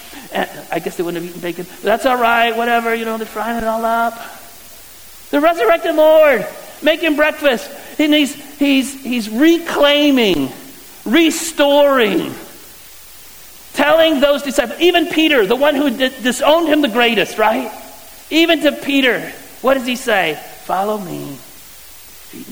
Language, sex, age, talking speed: English, male, 50-69, 145 wpm